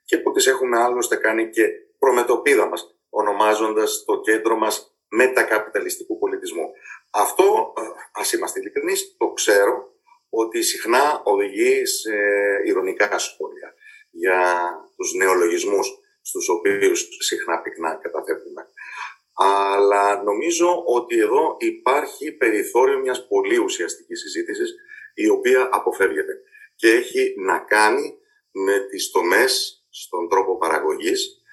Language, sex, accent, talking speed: Greek, male, native, 110 wpm